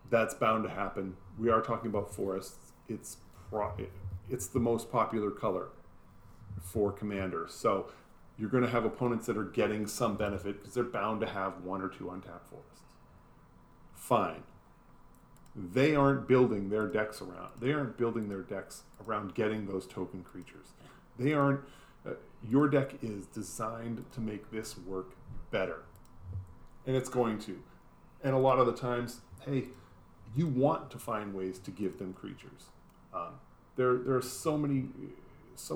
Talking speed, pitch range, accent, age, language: 160 wpm, 100-125 Hz, American, 40-59, English